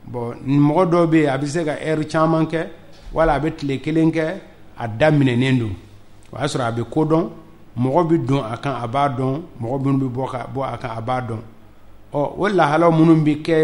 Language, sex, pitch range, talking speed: French, male, 120-150 Hz, 130 wpm